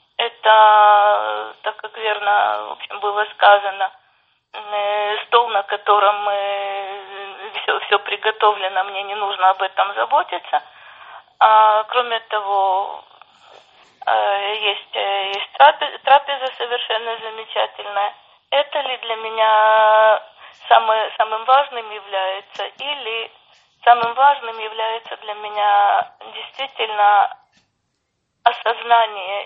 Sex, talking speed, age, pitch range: female, 90 wpm, 20-39, 205-240 Hz